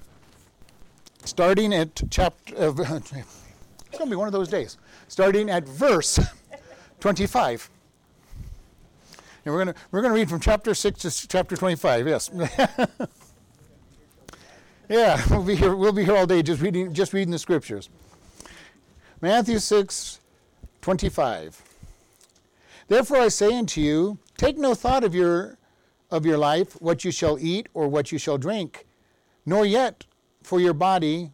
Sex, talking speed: male, 140 wpm